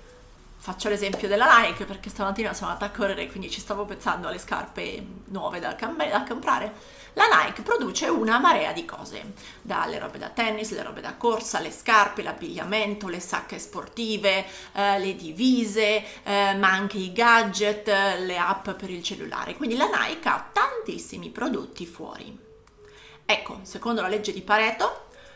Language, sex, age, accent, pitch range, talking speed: Italian, female, 30-49, native, 195-230 Hz, 165 wpm